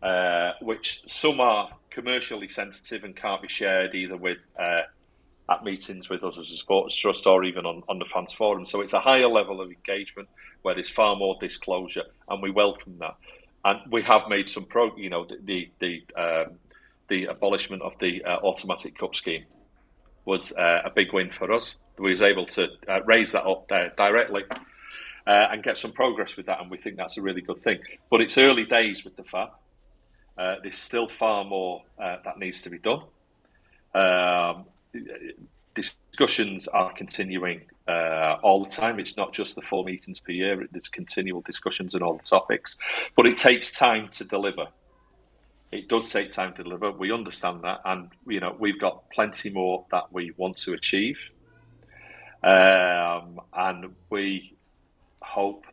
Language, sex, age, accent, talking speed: English, male, 40-59, British, 180 wpm